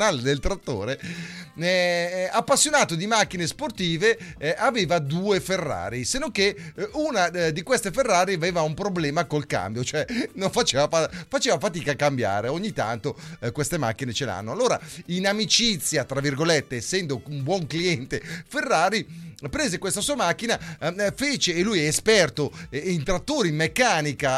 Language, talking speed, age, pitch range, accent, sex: Italian, 150 wpm, 30-49, 160-235 Hz, native, male